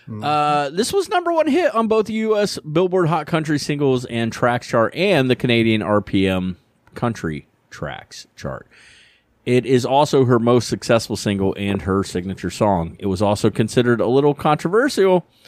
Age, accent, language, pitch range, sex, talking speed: 30-49, American, English, 95-140 Hz, male, 165 wpm